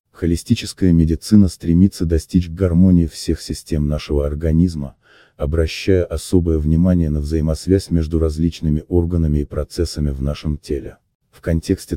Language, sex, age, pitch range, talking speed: Russian, male, 30-49, 75-90 Hz, 120 wpm